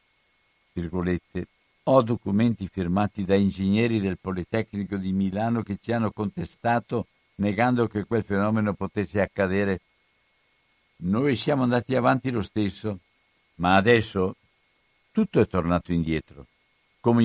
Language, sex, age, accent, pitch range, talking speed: Italian, male, 60-79, native, 95-115 Hz, 110 wpm